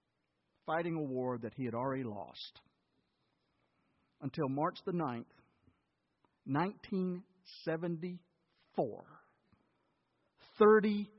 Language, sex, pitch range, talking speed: English, male, 110-155 Hz, 75 wpm